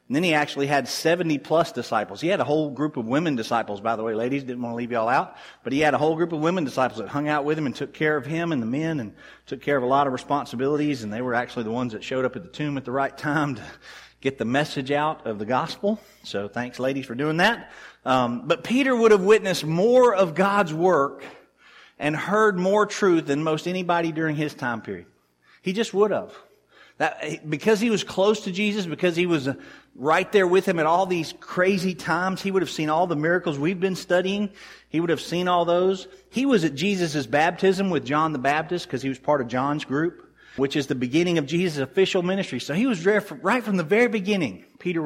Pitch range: 140-190 Hz